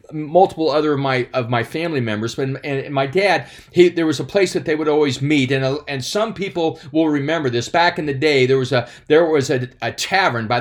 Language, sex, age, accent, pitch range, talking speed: English, male, 40-59, American, 135-195 Hz, 250 wpm